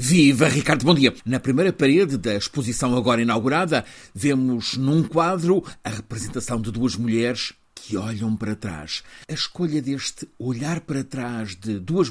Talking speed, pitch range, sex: 155 wpm, 100-130 Hz, male